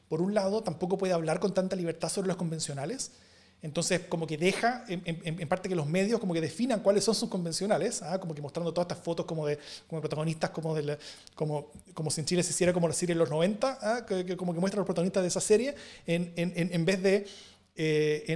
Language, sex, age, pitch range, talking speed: Spanish, male, 30-49, 155-195 Hz, 245 wpm